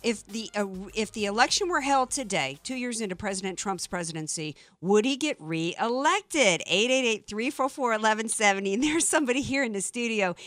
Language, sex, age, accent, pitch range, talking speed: English, female, 50-69, American, 195-265 Hz, 155 wpm